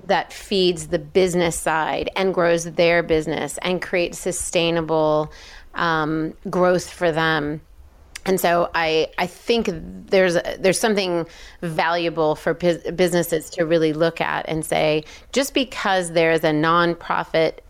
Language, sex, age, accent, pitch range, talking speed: English, female, 30-49, American, 155-175 Hz, 140 wpm